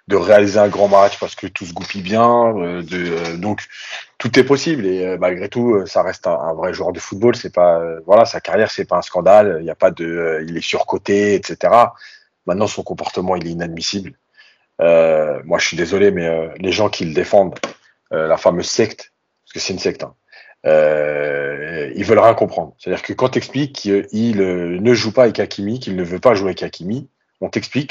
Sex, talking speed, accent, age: male, 225 wpm, French, 40-59